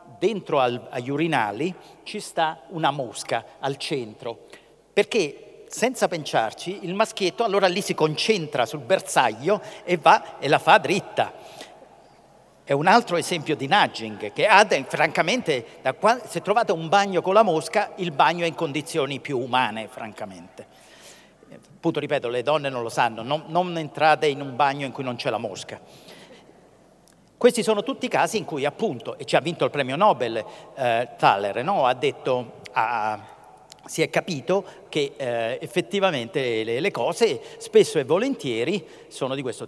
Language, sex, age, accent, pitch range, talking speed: Italian, male, 50-69, native, 140-205 Hz, 165 wpm